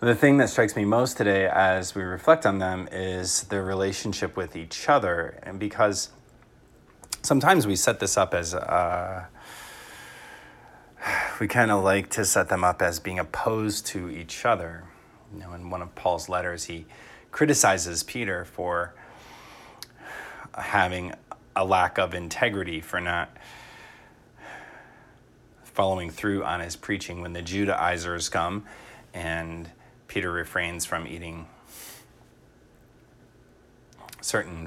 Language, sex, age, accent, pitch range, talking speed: English, male, 30-49, American, 85-105 Hz, 130 wpm